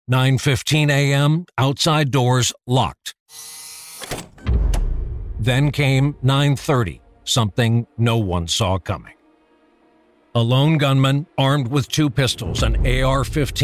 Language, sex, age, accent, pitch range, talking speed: English, male, 50-69, American, 115-140 Hz, 90 wpm